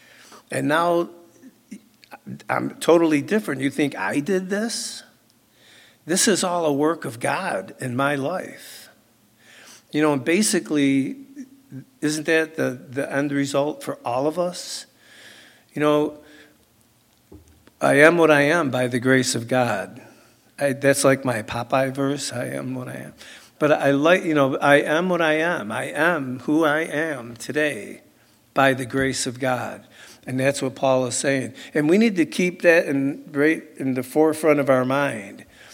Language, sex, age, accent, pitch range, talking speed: English, male, 60-79, American, 130-155 Hz, 165 wpm